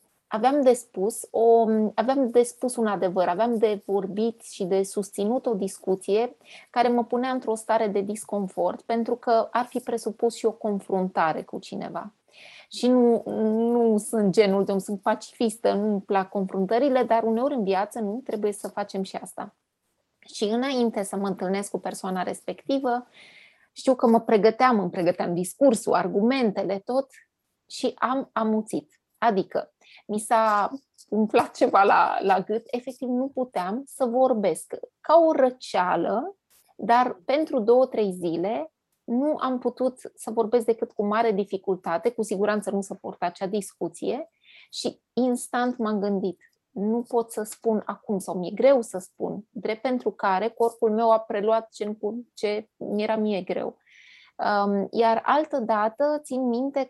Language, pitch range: Romanian, 205-250 Hz